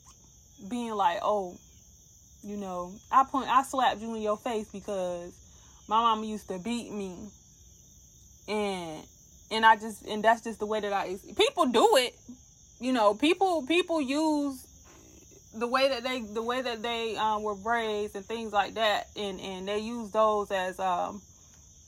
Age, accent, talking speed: 20-39, American, 165 wpm